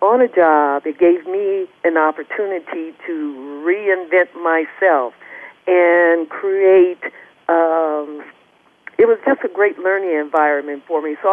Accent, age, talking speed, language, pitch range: American, 50-69, 130 wpm, English, 160-210 Hz